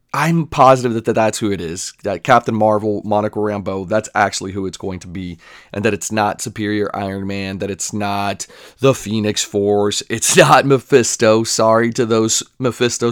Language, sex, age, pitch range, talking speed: English, male, 30-49, 105-120 Hz, 180 wpm